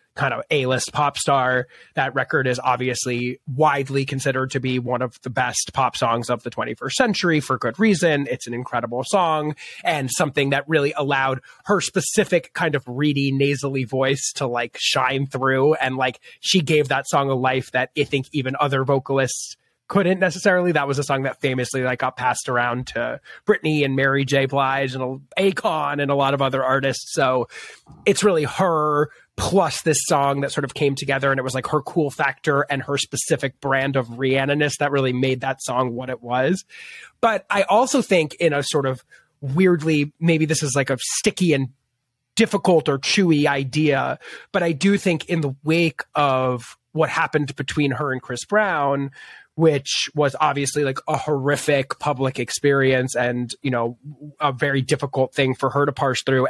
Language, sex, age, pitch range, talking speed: English, male, 30-49, 130-155 Hz, 185 wpm